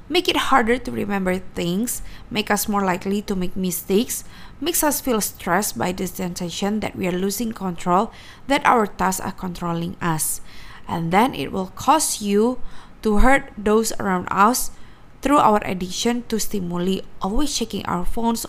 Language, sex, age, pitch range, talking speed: Indonesian, female, 20-39, 180-240 Hz, 165 wpm